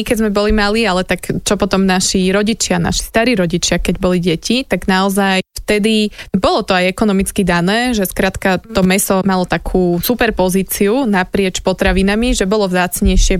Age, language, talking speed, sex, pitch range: 20-39, Slovak, 165 wpm, female, 185-205 Hz